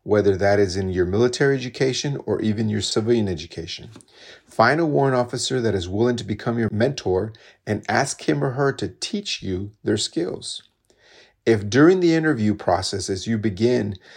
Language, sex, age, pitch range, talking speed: English, male, 40-59, 100-125 Hz, 175 wpm